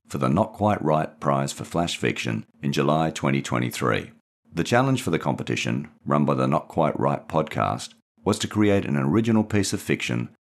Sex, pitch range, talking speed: male, 70-105 Hz, 185 wpm